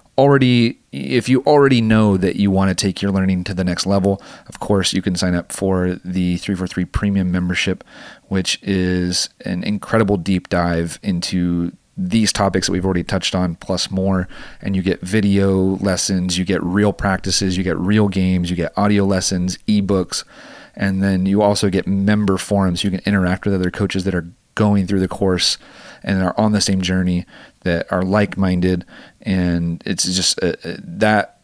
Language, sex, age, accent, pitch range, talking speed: English, male, 30-49, American, 90-100 Hz, 180 wpm